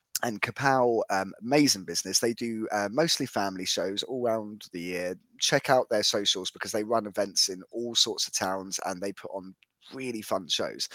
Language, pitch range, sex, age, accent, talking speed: English, 105-135 Hz, male, 10-29, British, 190 wpm